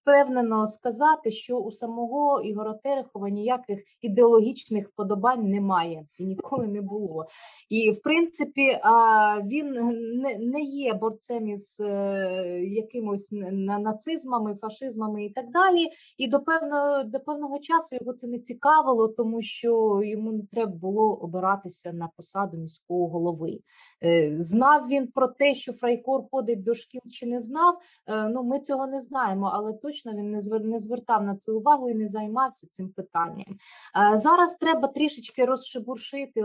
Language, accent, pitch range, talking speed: Ukrainian, native, 205-265 Hz, 140 wpm